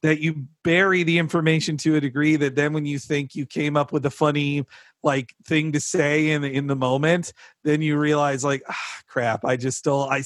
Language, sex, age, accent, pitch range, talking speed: English, male, 40-59, American, 130-160 Hz, 220 wpm